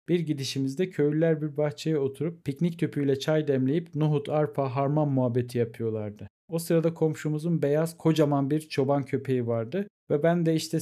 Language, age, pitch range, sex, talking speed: Turkish, 50-69, 135-165 Hz, male, 155 wpm